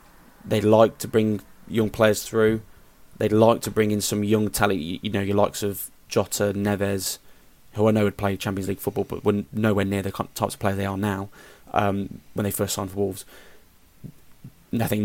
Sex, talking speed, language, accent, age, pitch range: male, 195 wpm, English, British, 20-39, 100-110 Hz